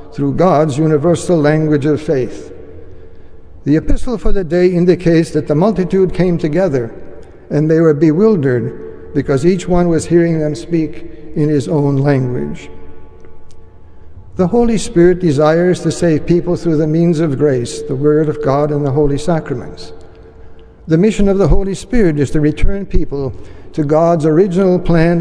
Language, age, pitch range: English, 60-79, 125-170 Hz